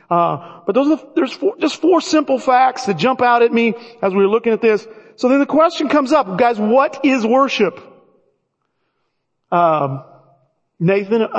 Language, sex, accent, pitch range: English, male, American, 180-230 Hz